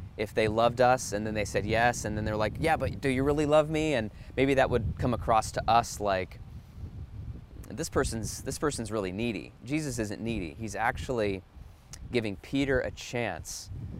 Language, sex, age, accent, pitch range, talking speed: English, male, 20-39, American, 100-125 Hz, 190 wpm